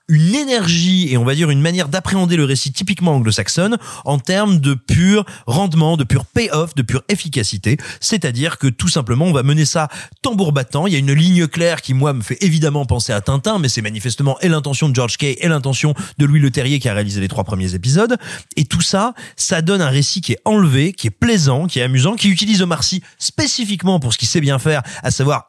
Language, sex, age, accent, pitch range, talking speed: French, male, 30-49, French, 135-185 Hz, 230 wpm